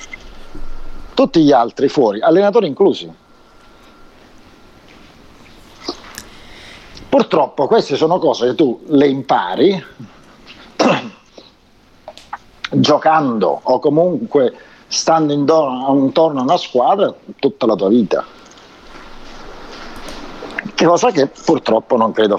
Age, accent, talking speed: 50-69, native, 85 wpm